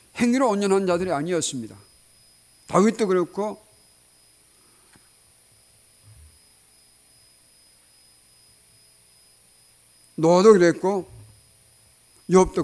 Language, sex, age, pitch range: Korean, male, 50-69, 145-205 Hz